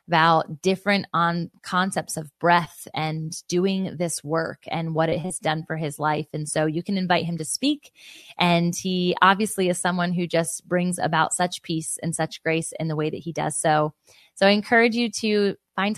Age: 20-39